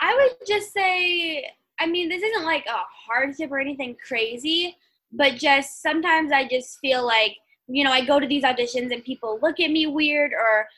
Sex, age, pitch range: female, 10-29, 235-295 Hz